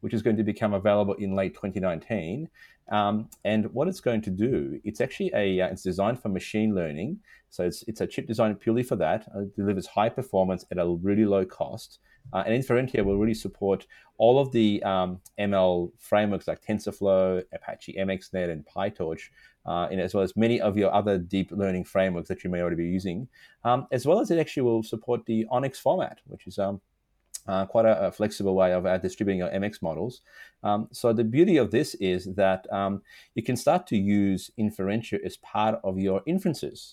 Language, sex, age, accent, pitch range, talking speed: English, male, 30-49, Australian, 95-115 Hz, 205 wpm